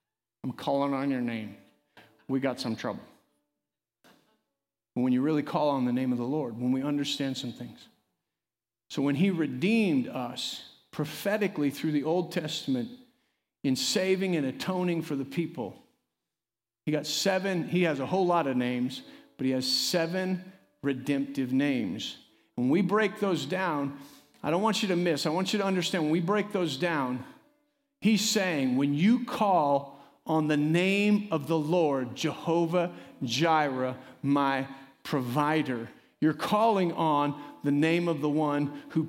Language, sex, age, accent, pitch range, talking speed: English, male, 50-69, American, 145-215 Hz, 155 wpm